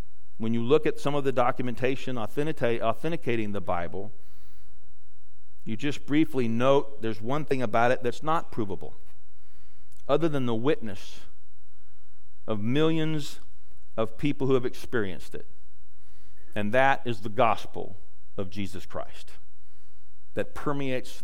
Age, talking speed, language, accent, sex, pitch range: 40-59, 125 wpm, English, American, male, 95-130 Hz